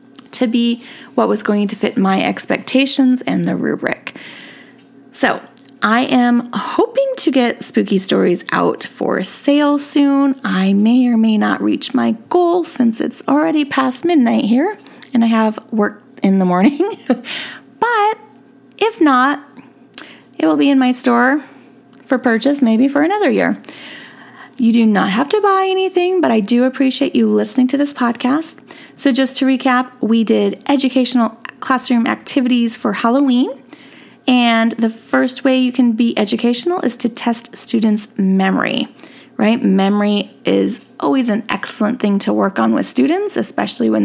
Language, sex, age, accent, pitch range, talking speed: English, female, 30-49, American, 225-285 Hz, 155 wpm